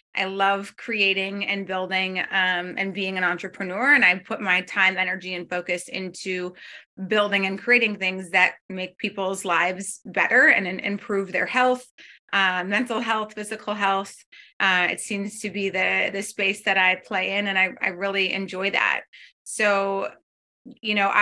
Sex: female